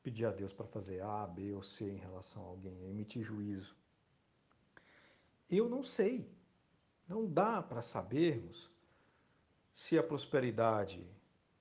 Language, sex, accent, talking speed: Portuguese, male, Brazilian, 130 wpm